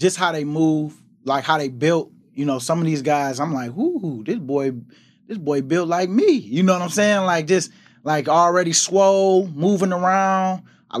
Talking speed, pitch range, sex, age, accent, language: 200 wpm, 145-175 Hz, male, 20-39, American, English